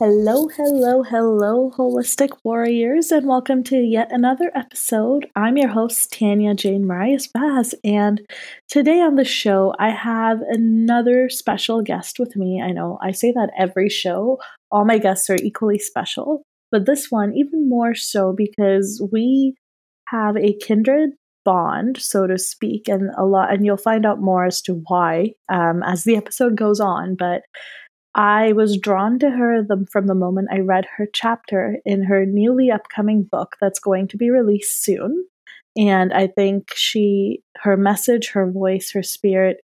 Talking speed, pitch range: 165 wpm, 195-245 Hz